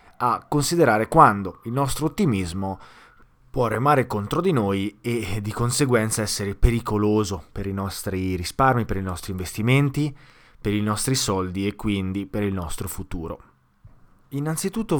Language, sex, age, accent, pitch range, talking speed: Italian, male, 20-39, native, 100-130 Hz, 140 wpm